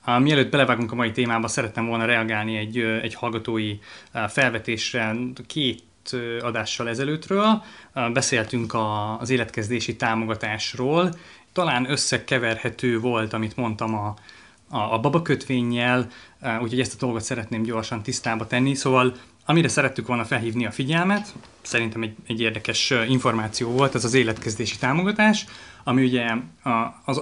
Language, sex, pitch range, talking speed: Hungarian, male, 110-130 Hz, 130 wpm